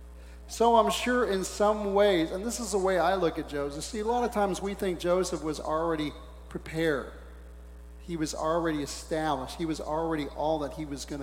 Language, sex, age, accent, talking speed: English, male, 40-59, American, 205 wpm